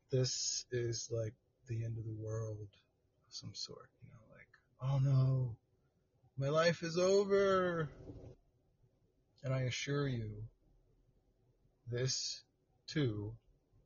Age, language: 30-49, English